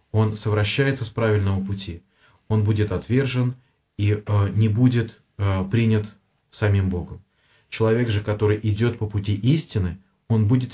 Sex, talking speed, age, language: male, 130 wpm, 30-49, English